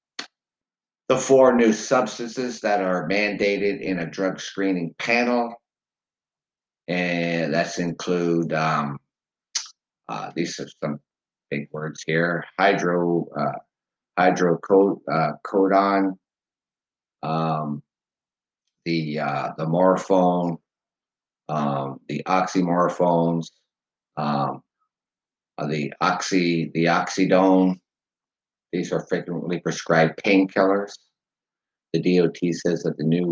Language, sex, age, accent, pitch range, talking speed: English, male, 50-69, American, 80-95 Hz, 95 wpm